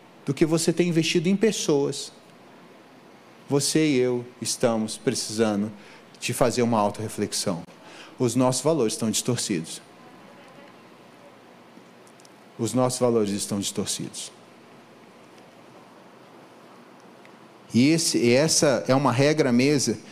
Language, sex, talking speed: Portuguese, male, 105 wpm